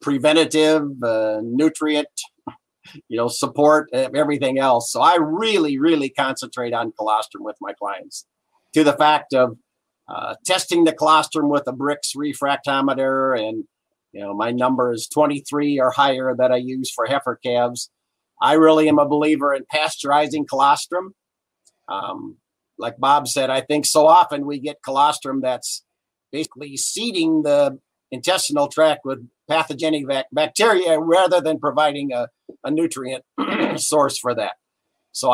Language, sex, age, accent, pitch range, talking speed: English, male, 50-69, American, 130-155 Hz, 140 wpm